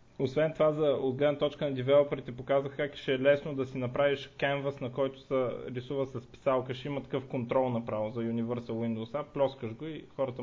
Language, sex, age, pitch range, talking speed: Bulgarian, male, 20-39, 120-150 Hz, 185 wpm